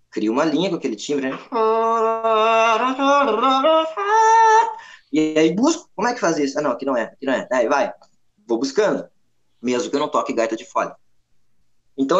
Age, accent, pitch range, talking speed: 20-39, Brazilian, 135-195 Hz, 175 wpm